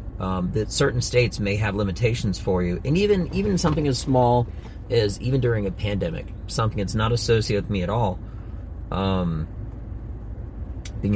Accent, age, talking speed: American, 30-49, 160 wpm